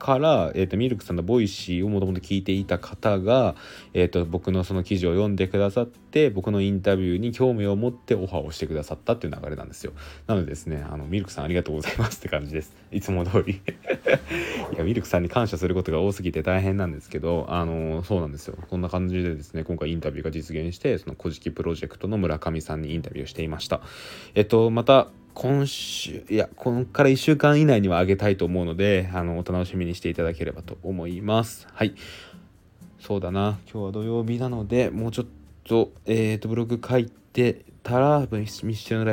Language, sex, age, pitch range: Japanese, male, 20-39, 85-105 Hz